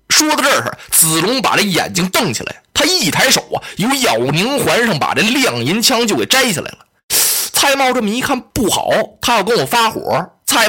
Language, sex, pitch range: Chinese, male, 190-265 Hz